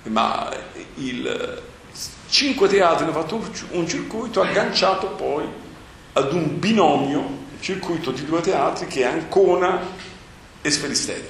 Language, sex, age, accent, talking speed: Italian, male, 50-69, native, 115 wpm